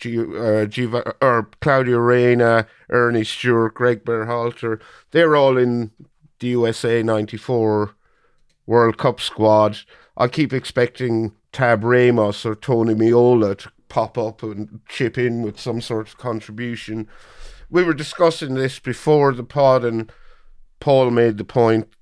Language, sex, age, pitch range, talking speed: English, male, 50-69, 110-125 Hz, 135 wpm